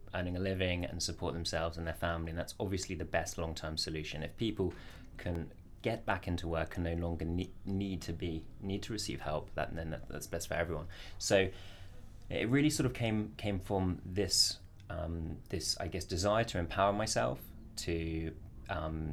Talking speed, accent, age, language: 180 wpm, British, 20-39, English